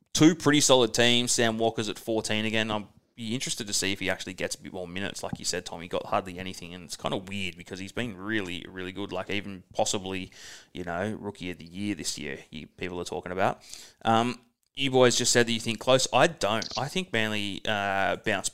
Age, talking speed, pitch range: 20-39, 240 wpm, 95-115 Hz